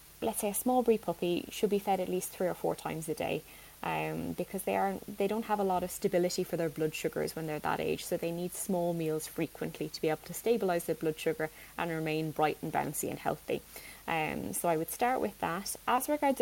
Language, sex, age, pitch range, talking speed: English, female, 20-39, 160-190 Hz, 240 wpm